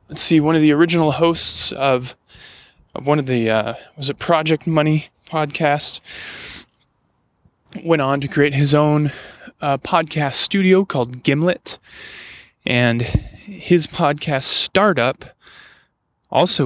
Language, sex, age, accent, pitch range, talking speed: English, male, 20-39, American, 130-160 Hz, 125 wpm